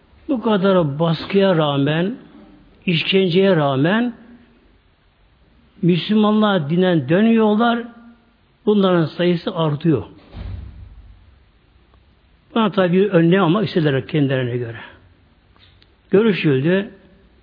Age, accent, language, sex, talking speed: 60-79, native, Turkish, male, 65 wpm